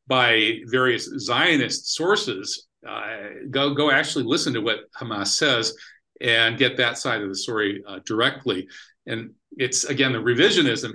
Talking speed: 150 wpm